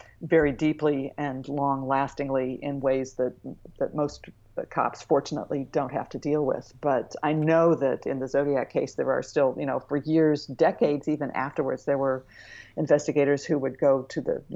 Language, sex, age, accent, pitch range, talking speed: English, female, 50-69, American, 135-155 Hz, 175 wpm